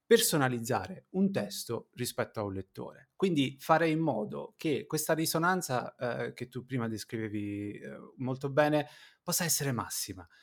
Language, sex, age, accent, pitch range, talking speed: Italian, male, 30-49, native, 115-155 Hz, 145 wpm